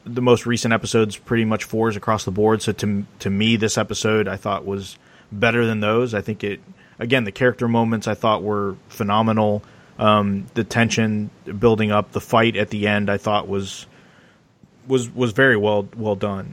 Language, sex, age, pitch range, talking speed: English, male, 30-49, 100-120 Hz, 190 wpm